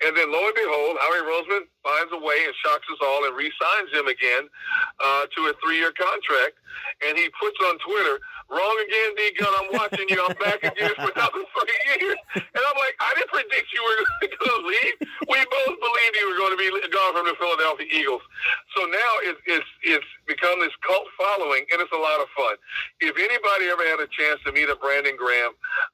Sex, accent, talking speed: male, American, 215 wpm